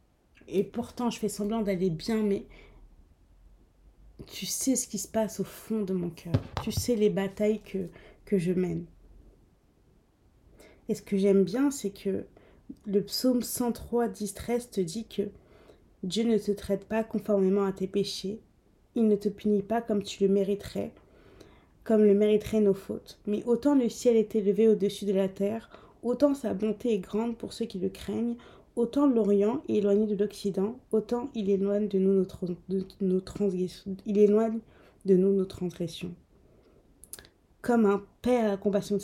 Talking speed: 165 wpm